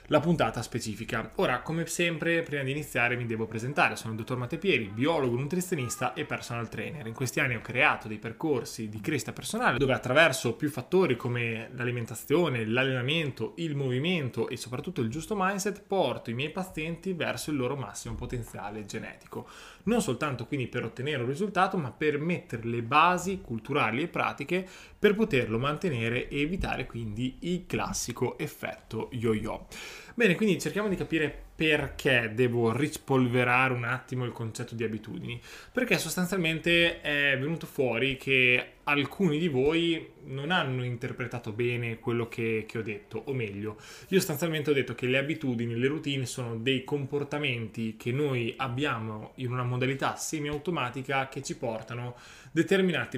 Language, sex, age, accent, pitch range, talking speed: Italian, male, 20-39, native, 120-155 Hz, 155 wpm